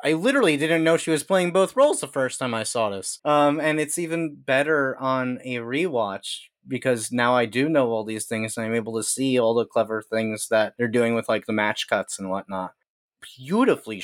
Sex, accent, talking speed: male, American, 220 wpm